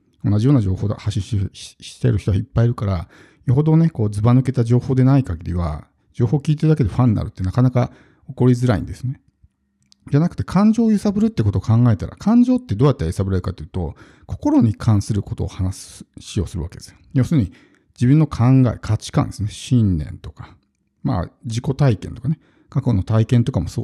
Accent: native